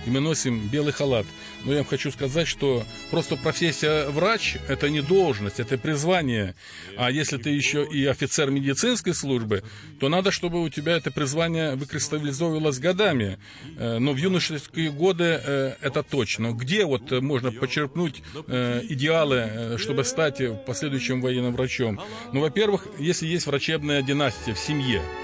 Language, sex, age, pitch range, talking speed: Russian, male, 40-59, 125-160 Hz, 145 wpm